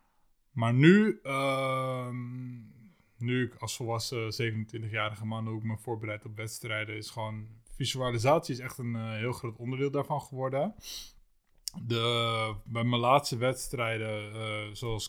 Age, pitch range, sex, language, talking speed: 20-39, 110-130 Hz, male, Dutch, 135 wpm